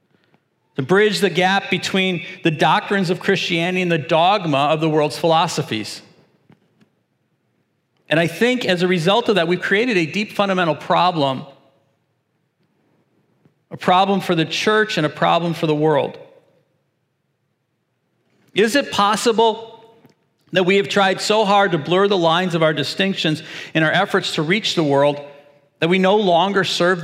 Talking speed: 155 wpm